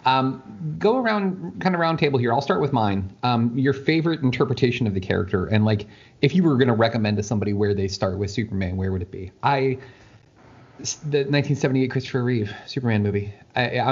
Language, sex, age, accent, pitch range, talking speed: English, male, 30-49, American, 105-130 Hz, 195 wpm